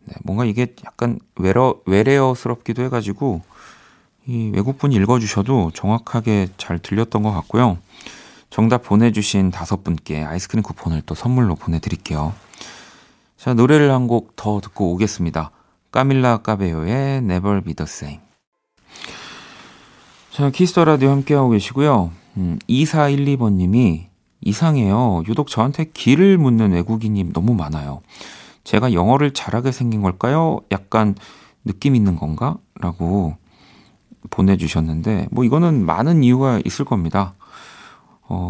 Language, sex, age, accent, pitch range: Korean, male, 40-59, native, 90-125 Hz